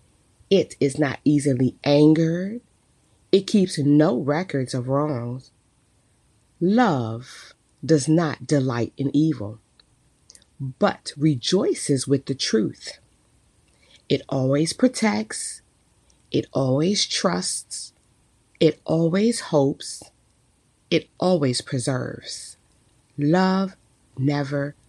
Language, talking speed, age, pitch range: English, 85 wpm, 30-49, 120-155 Hz